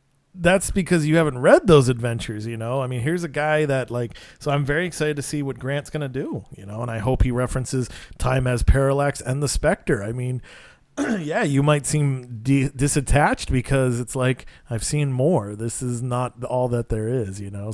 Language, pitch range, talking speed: English, 115-140 Hz, 210 wpm